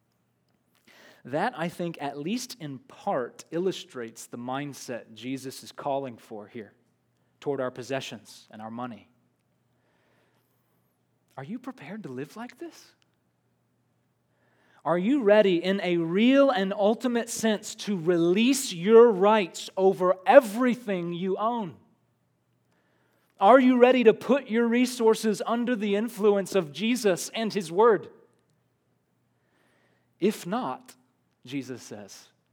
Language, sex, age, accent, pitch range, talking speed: English, male, 30-49, American, 135-215 Hz, 120 wpm